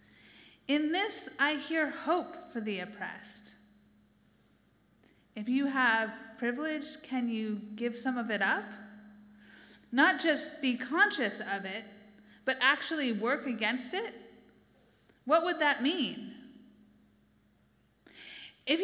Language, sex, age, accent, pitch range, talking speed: English, female, 30-49, American, 215-290 Hz, 110 wpm